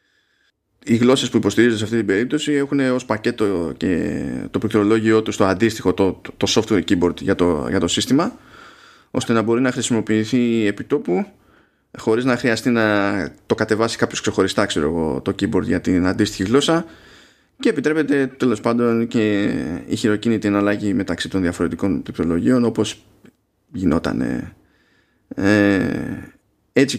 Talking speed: 145 wpm